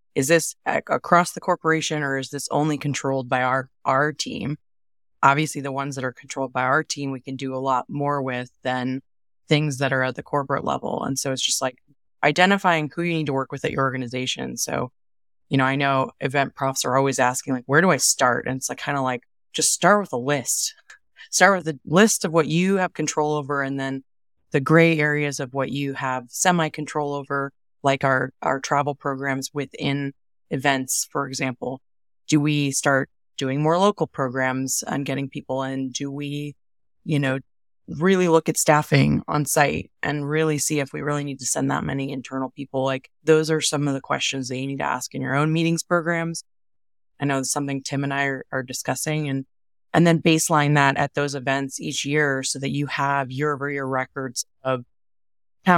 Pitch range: 130-150 Hz